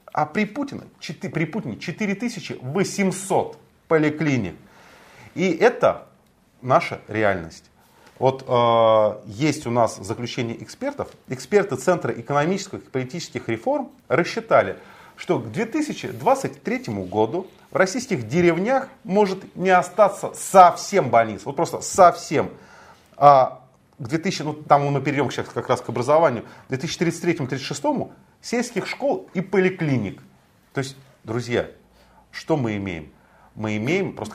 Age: 30-49